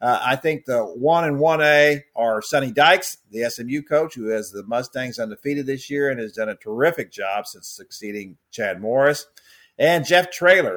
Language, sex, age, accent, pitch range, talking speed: English, male, 50-69, American, 115-150 Hz, 185 wpm